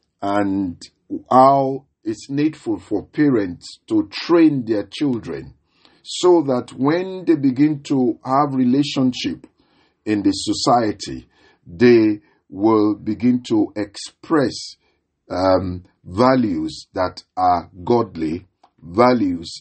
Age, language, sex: 50-69, English, male